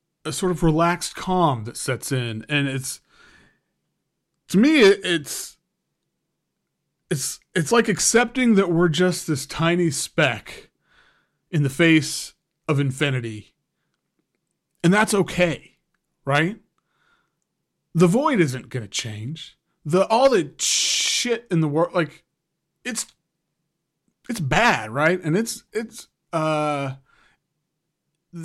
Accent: American